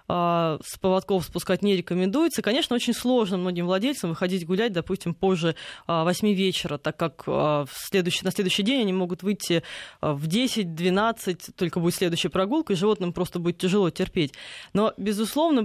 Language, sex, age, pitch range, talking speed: Russian, female, 20-39, 175-220 Hz, 150 wpm